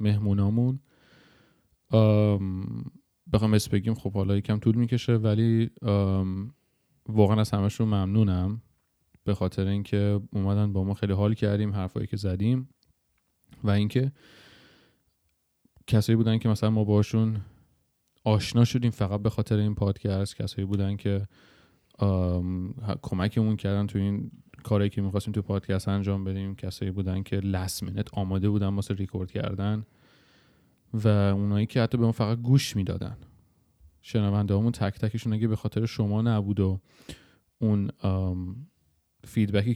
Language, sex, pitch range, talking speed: Persian, male, 100-115 Hz, 125 wpm